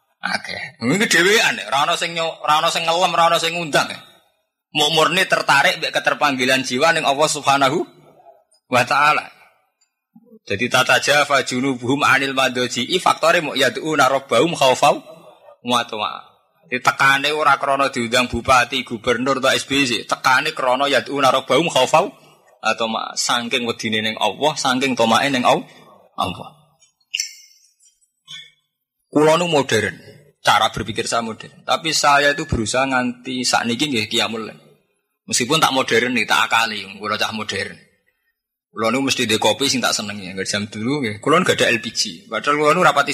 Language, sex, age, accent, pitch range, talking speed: Indonesian, male, 20-39, native, 125-170 Hz, 145 wpm